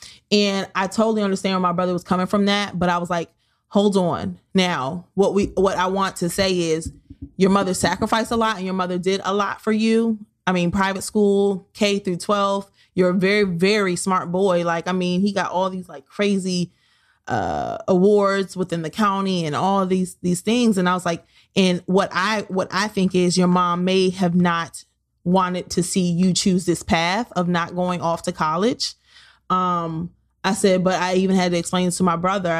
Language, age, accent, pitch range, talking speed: English, 20-39, American, 175-195 Hz, 210 wpm